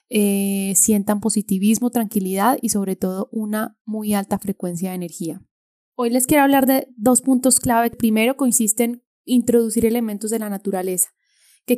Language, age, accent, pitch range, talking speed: Spanish, 10-29, Colombian, 200-240 Hz, 155 wpm